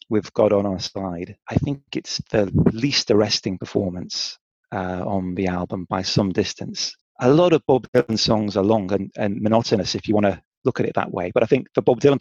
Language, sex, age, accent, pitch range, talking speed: English, male, 30-49, British, 100-140 Hz, 220 wpm